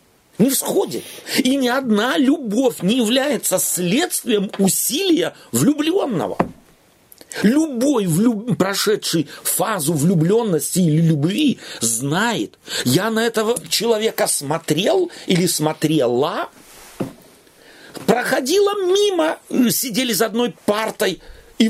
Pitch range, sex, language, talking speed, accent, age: 165-240 Hz, male, Russian, 90 wpm, native, 40-59